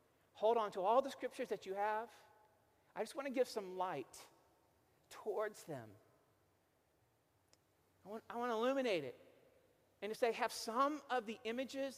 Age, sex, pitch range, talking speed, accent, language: 40-59, male, 175-245 Hz, 165 wpm, American, English